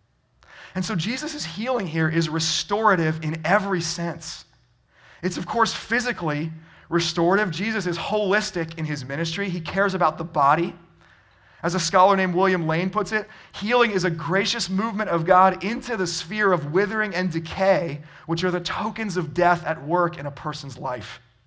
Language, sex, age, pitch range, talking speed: English, male, 30-49, 150-190 Hz, 170 wpm